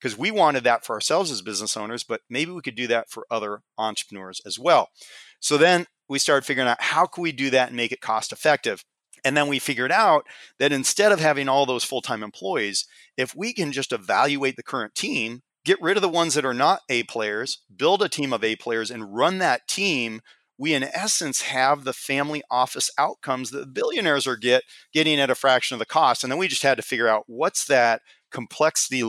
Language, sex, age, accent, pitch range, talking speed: English, male, 30-49, American, 115-150 Hz, 220 wpm